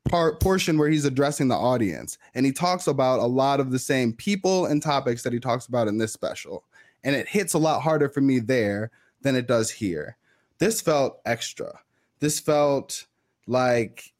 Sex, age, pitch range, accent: male, 20-39, 125-165 Hz, American